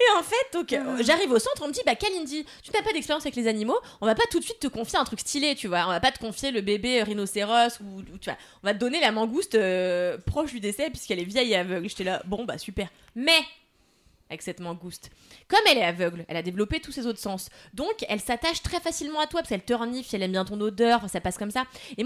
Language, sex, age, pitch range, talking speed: French, female, 20-39, 190-255 Hz, 265 wpm